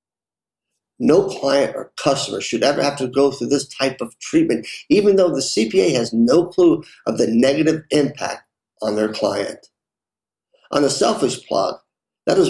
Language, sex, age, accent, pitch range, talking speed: English, male, 50-69, American, 115-150 Hz, 165 wpm